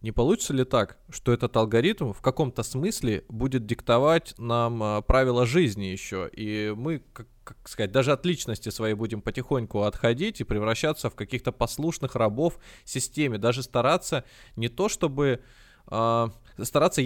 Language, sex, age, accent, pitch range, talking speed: Russian, male, 20-39, native, 110-150 Hz, 140 wpm